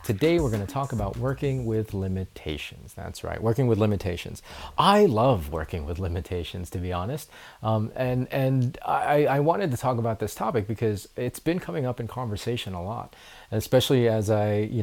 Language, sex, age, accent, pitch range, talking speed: English, male, 30-49, American, 105-130 Hz, 180 wpm